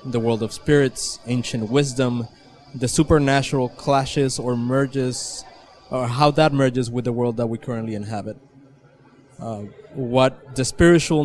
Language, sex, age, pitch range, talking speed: English, male, 20-39, 125-140 Hz, 140 wpm